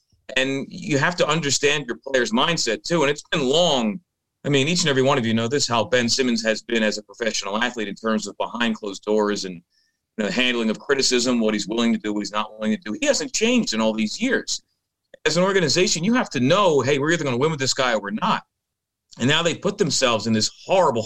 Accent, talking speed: American, 250 wpm